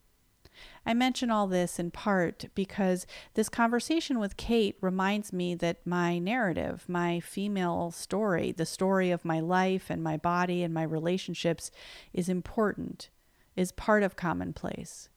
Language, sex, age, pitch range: English, female, 40-59, 165-195 Hz